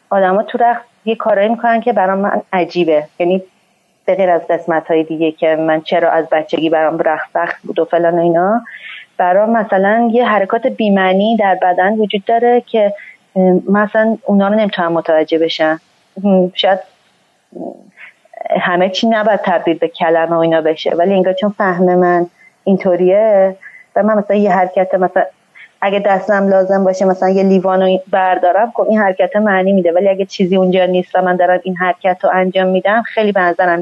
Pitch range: 175-215 Hz